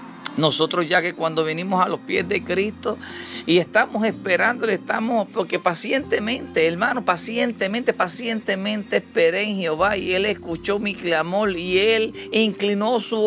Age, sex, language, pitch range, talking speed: 50-69, male, Spanish, 175-215 Hz, 140 wpm